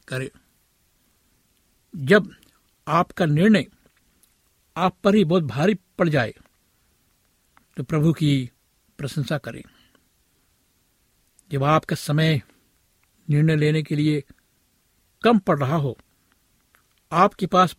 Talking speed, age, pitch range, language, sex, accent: 100 wpm, 60-79, 135-180 Hz, Hindi, male, native